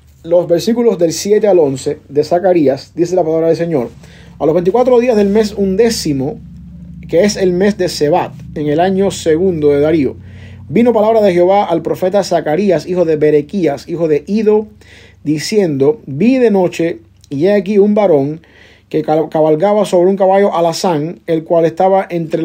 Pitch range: 150-190 Hz